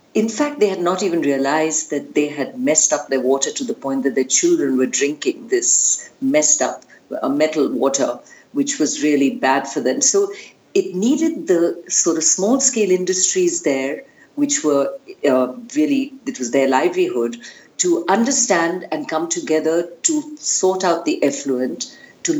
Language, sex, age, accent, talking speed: English, female, 50-69, Indian, 165 wpm